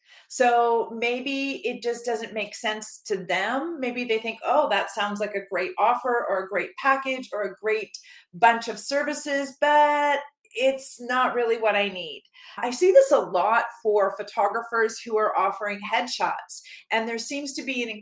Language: English